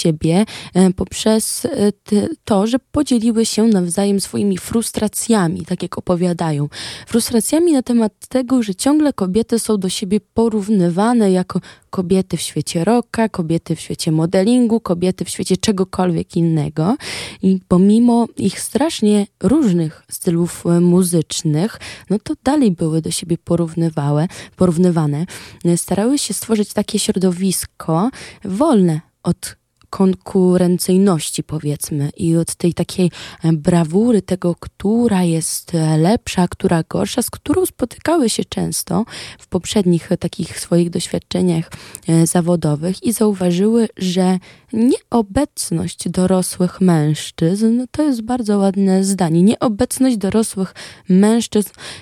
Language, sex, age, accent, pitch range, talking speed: Polish, female, 20-39, native, 170-210 Hz, 110 wpm